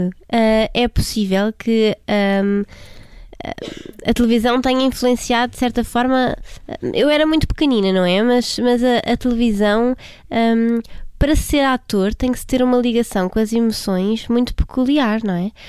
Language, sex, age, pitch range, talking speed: Portuguese, female, 20-39, 195-240 Hz, 145 wpm